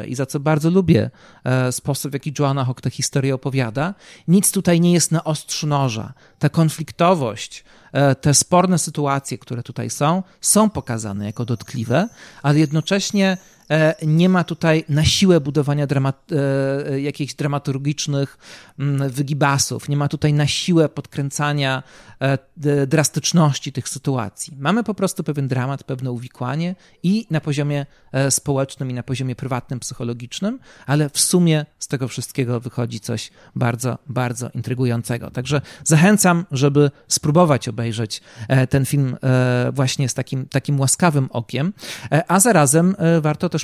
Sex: male